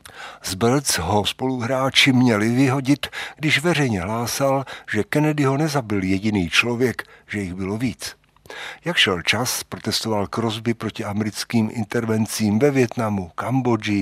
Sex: male